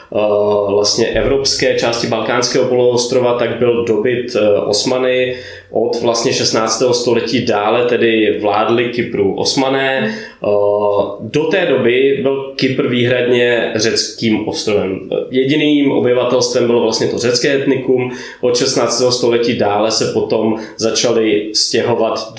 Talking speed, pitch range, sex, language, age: 110 wpm, 110-130 Hz, male, Czech, 20-39